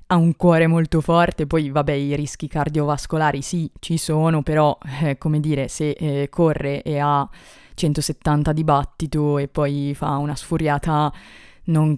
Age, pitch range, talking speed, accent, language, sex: 20-39, 145-170 Hz, 155 wpm, native, Italian, female